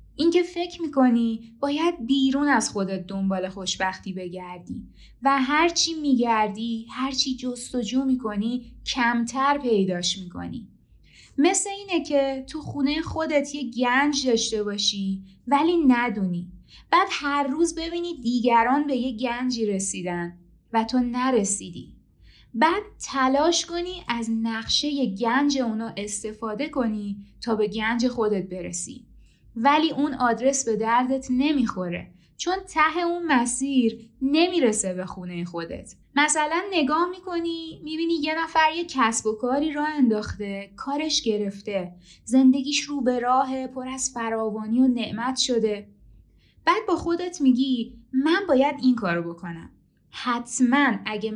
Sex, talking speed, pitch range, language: female, 125 wpm, 215-285 Hz, Persian